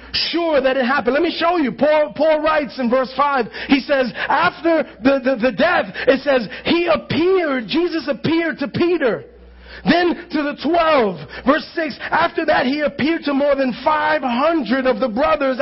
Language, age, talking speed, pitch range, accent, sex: English, 40-59, 175 wpm, 235-310 Hz, American, male